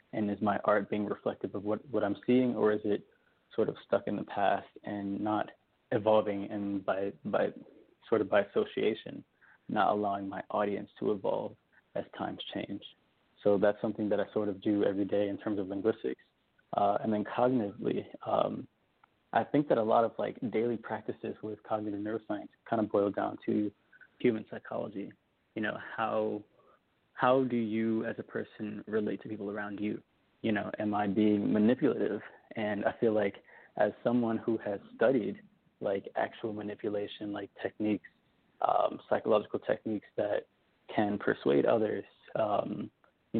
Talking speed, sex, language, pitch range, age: 165 wpm, male, English, 105-110 Hz, 20-39